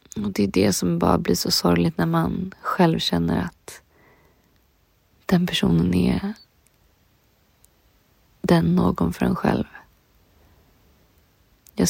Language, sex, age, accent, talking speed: Swedish, female, 30-49, native, 115 wpm